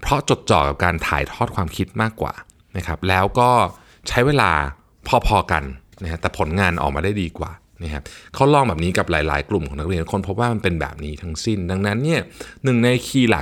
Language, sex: Thai, male